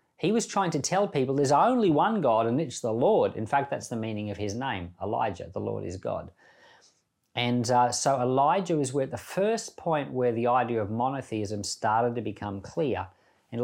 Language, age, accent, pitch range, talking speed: English, 40-59, Australian, 105-140 Hz, 200 wpm